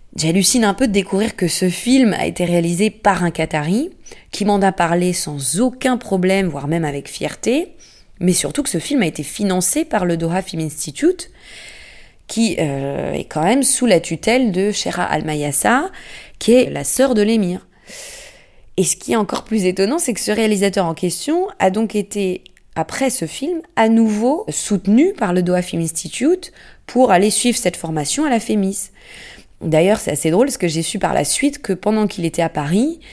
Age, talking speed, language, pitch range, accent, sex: 20-39, 195 wpm, French, 160-220 Hz, French, female